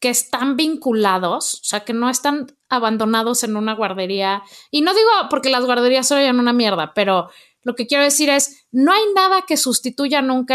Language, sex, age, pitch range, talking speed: Spanish, female, 30-49, 220-285 Hz, 190 wpm